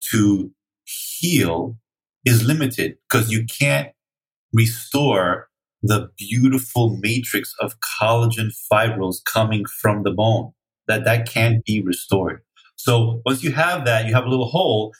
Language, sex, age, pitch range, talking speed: English, male, 30-49, 110-130 Hz, 130 wpm